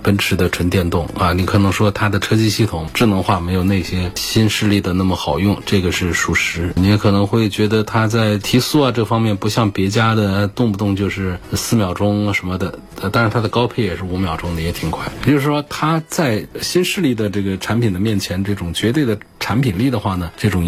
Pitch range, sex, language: 95-115 Hz, male, Chinese